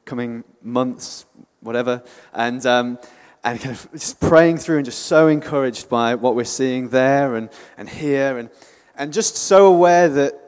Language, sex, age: English, male, 30-49